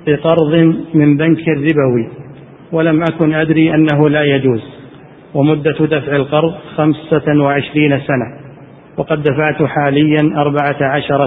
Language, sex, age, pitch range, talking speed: Arabic, male, 40-59, 140-160 Hz, 110 wpm